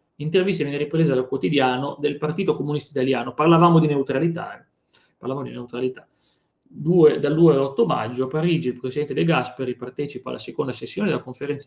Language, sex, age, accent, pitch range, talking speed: Italian, male, 30-49, native, 125-160 Hz, 160 wpm